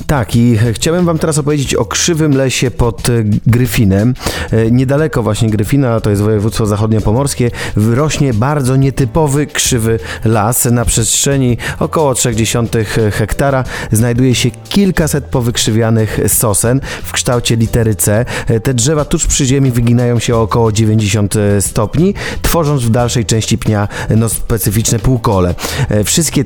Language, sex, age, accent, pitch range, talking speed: Polish, male, 30-49, native, 110-130 Hz, 130 wpm